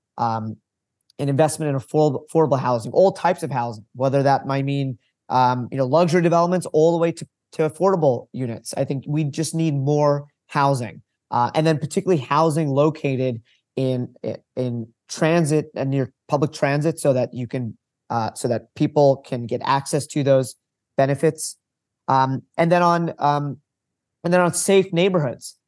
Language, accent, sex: English, American, male